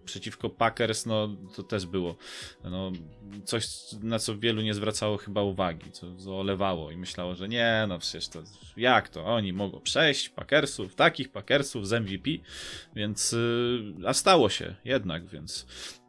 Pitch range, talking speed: 100-155 Hz, 140 wpm